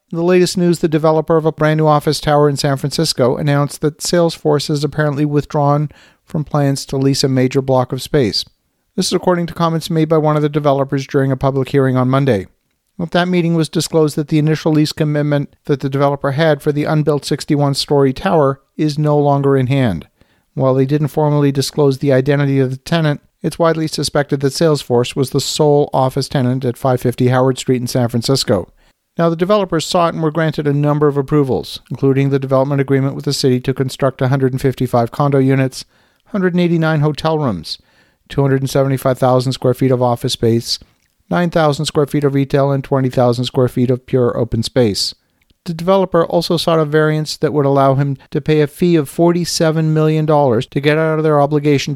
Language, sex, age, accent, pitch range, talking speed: English, male, 50-69, American, 135-155 Hz, 190 wpm